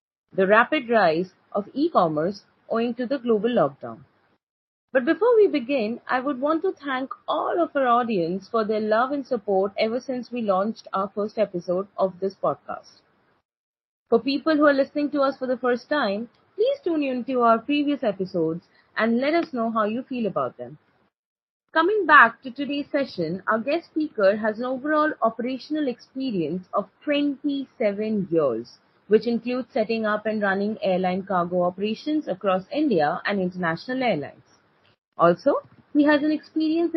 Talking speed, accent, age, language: 160 wpm, Indian, 30-49, English